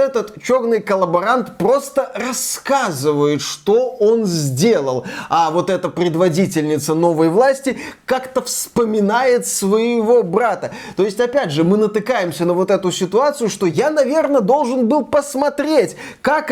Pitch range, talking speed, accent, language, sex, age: 175-245 Hz, 125 wpm, native, Russian, male, 20-39